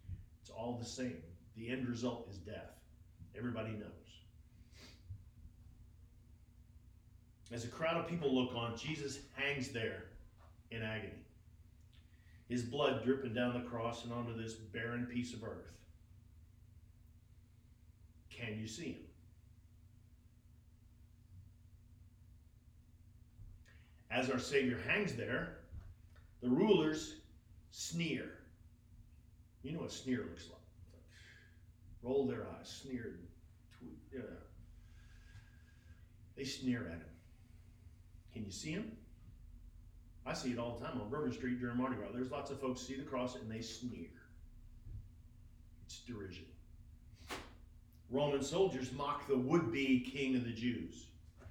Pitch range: 85-120 Hz